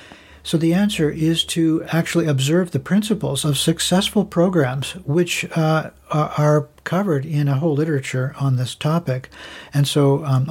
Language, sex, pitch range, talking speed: English, male, 135-160 Hz, 150 wpm